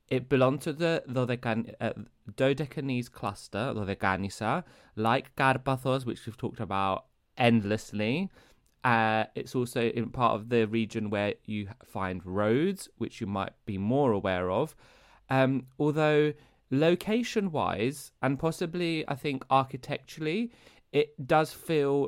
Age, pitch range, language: 20-39, 105-135 Hz, Greek